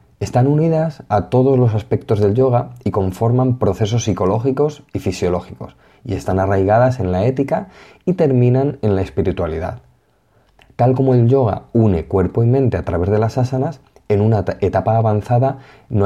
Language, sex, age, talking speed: Spanish, male, 30-49, 160 wpm